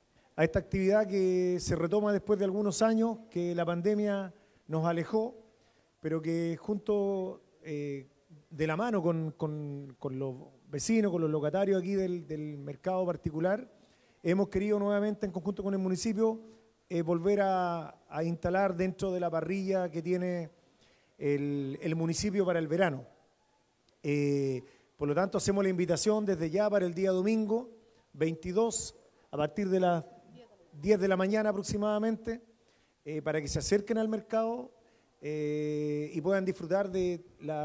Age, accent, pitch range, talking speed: 40-59, Argentinian, 160-205 Hz, 150 wpm